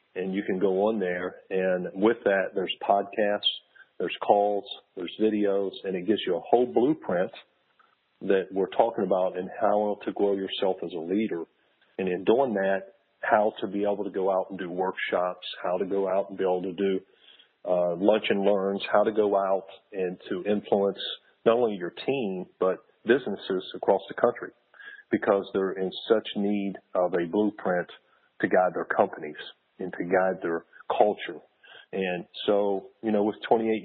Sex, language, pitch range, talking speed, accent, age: male, English, 95-105 Hz, 175 wpm, American, 50-69